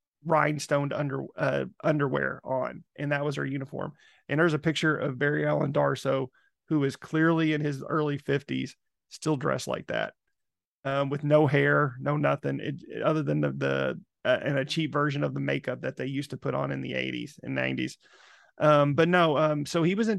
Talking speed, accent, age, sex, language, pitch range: 200 wpm, American, 30-49, male, English, 140-155 Hz